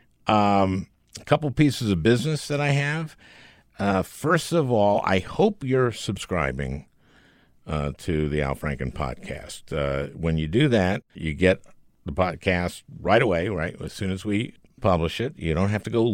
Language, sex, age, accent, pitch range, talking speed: English, male, 60-79, American, 80-110 Hz, 170 wpm